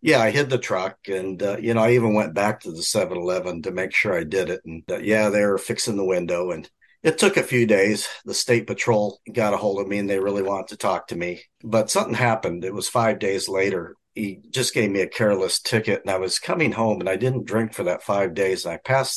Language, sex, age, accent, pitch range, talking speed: English, male, 50-69, American, 95-130 Hz, 260 wpm